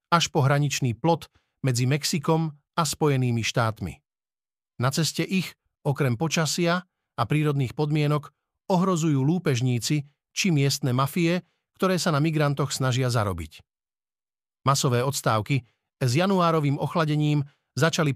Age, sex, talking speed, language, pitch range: 50-69, male, 110 wpm, Slovak, 130-165 Hz